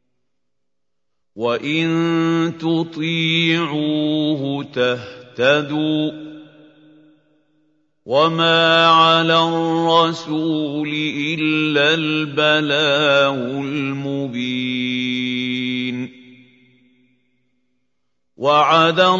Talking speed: 30 wpm